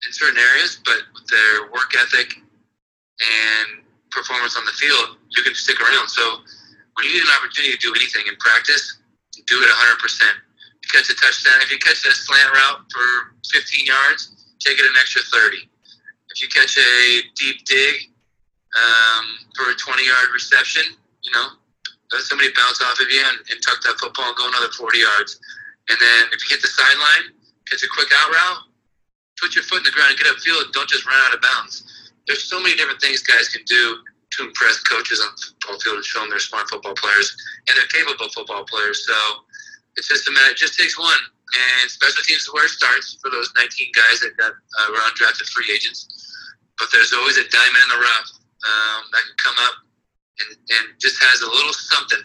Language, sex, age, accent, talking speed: English, male, 30-49, American, 205 wpm